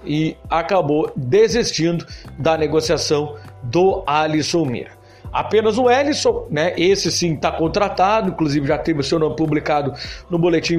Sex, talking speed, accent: male, 140 wpm, Brazilian